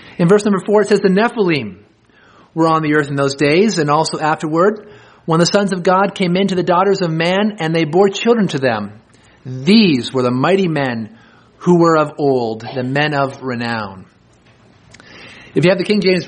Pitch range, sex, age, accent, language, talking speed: 135-170 Hz, male, 30-49, American, English, 200 wpm